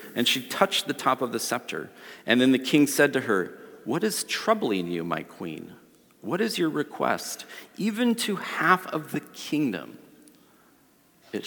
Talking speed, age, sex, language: 165 wpm, 40-59, male, English